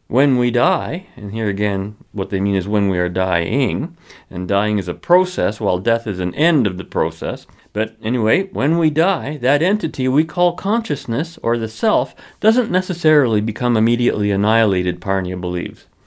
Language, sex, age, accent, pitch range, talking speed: English, male, 50-69, American, 105-130 Hz, 175 wpm